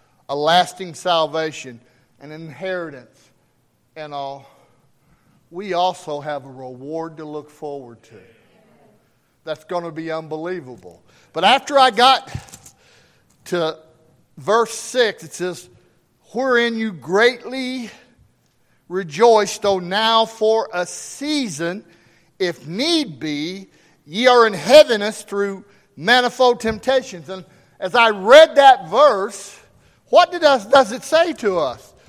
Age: 50-69